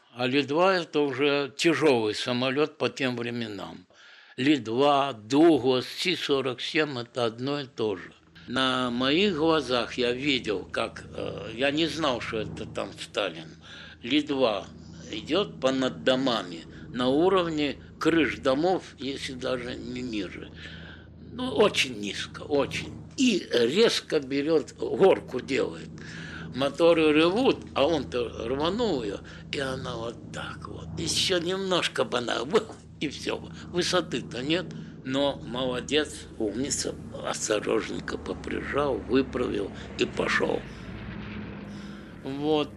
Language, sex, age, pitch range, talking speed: Russian, male, 60-79, 120-155 Hz, 110 wpm